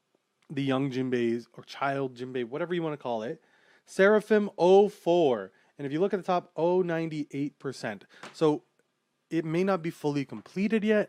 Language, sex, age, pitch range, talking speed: English, male, 30-49, 125-180 Hz, 160 wpm